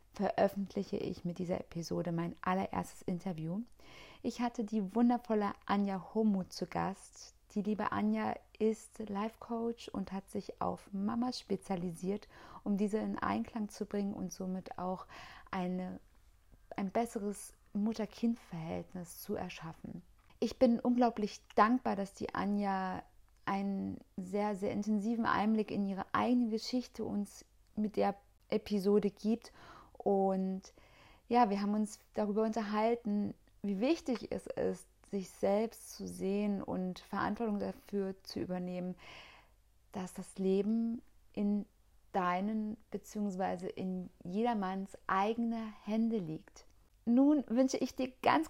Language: German